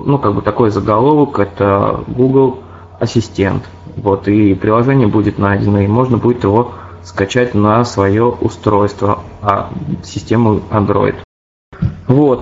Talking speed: 115 wpm